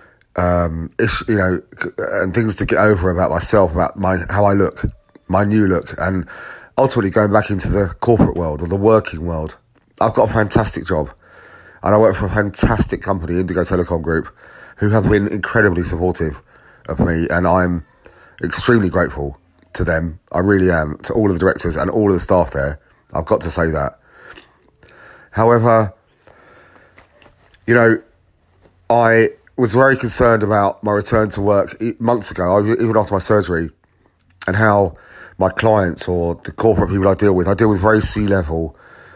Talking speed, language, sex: 170 wpm, English, male